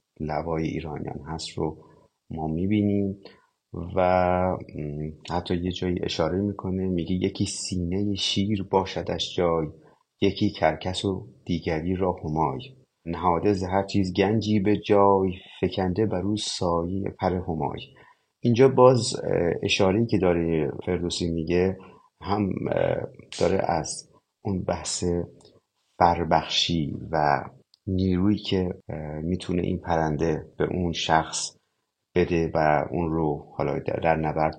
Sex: male